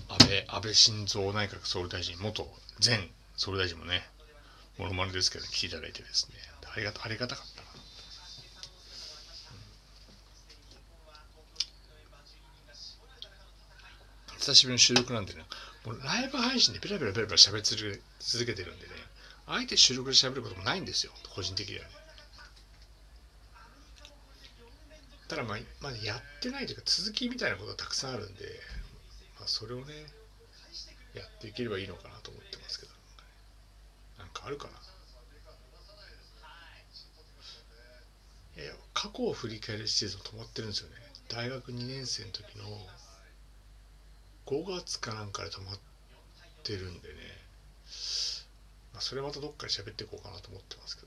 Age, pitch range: 60-79, 95-125 Hz